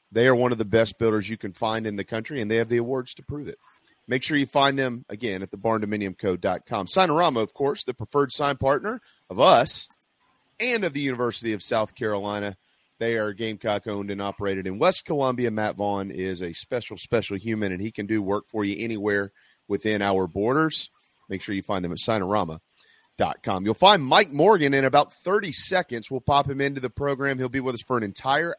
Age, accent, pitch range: 30-49, American, 110-140 Hz